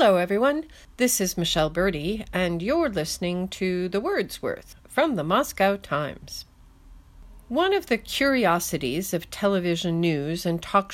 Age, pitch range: 50-69, 155-225 Hz